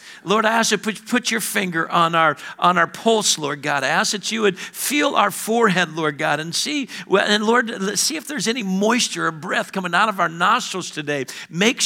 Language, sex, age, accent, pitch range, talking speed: English, male, 50-69, American, 175-220 Hz, 215 wpm